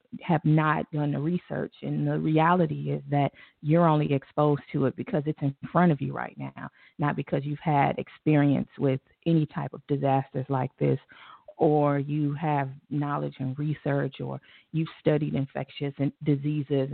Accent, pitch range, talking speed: American, 140-165 Hz, 165 wpm